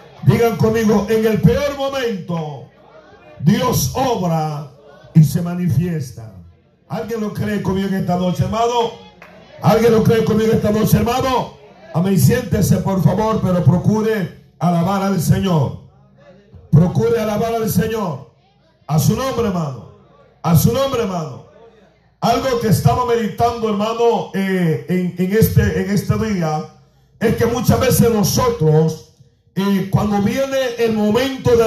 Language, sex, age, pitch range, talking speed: Spanish, male, 50-69, 160-230 Hz, 135 wpm